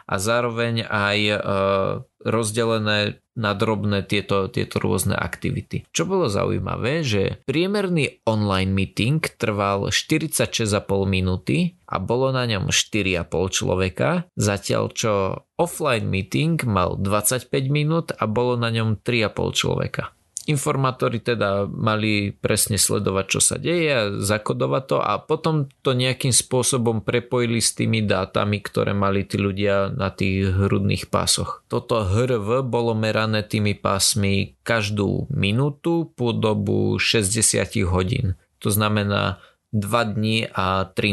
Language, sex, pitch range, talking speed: Slovak, male, 100-125 Hz, 125 wpm